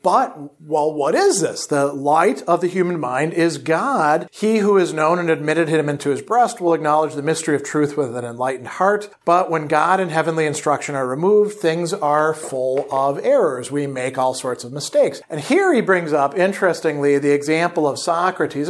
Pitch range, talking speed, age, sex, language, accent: 145-185 Hz, 200 wpm, 40-59, male, English, American